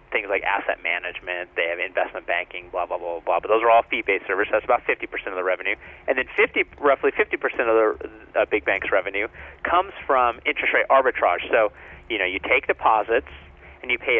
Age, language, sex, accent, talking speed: 30-49, English, male, American, 210 wpm